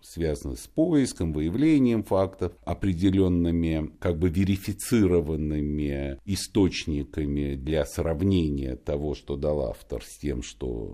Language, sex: Russian, male